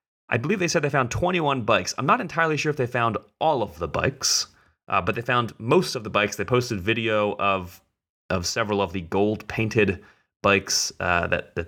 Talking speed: 205 wpm